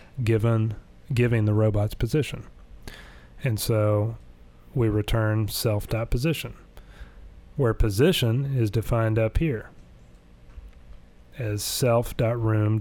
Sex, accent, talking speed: male, American, 85 wpm